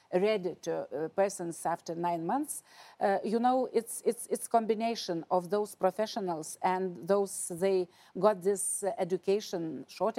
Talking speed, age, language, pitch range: 140 wpm, 50-69, English, 185-220 Hz